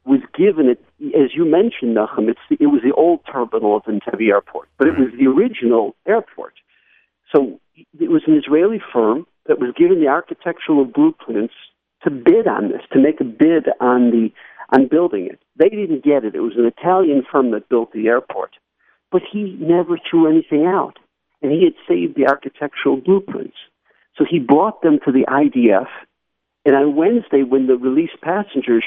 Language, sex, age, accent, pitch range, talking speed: English, male, 60-79, American, 120-200 Hz, 180 wpm